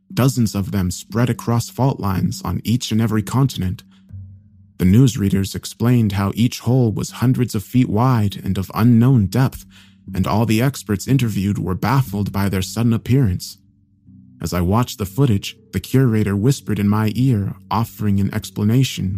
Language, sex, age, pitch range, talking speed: English, male, 30-49, 95-120 Hz, 165 wpm